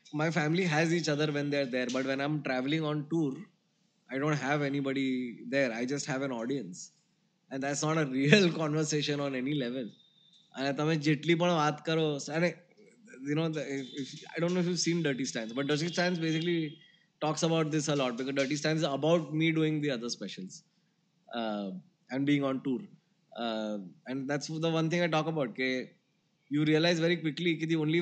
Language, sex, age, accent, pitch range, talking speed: Gujarati, male, 20-39, native, 145-180 Hz, 195 wpm